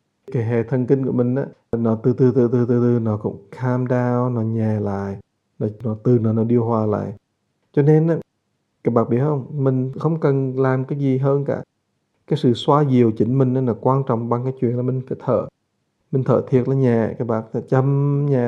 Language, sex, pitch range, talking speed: English, male, 125-150 Hz, 225 wpm